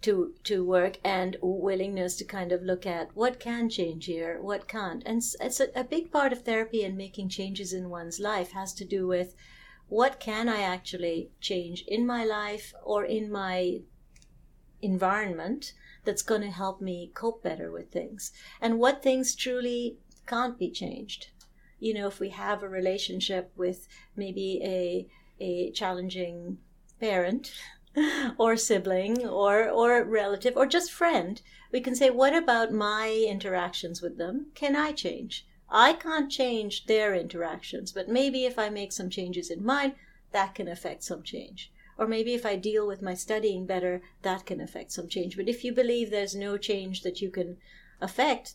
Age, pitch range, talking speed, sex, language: 50-69, 185-230 Hz, 170 wpm, female, English